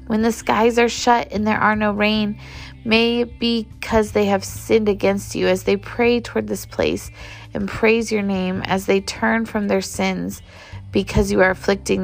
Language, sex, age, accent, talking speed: English, female, 20-39, American, 195 wpm